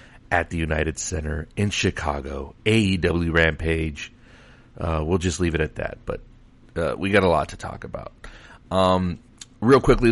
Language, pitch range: English, 85-105 Hz